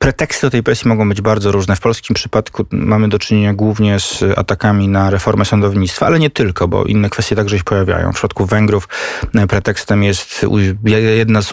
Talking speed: 185 wpm